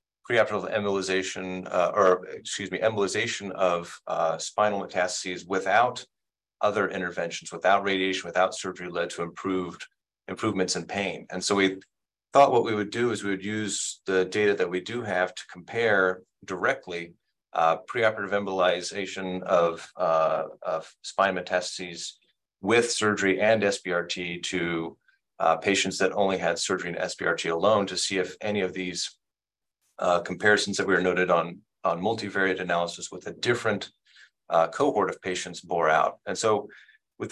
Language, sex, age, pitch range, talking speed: English, male, 30-49, 90-105 Hz, 155 wpm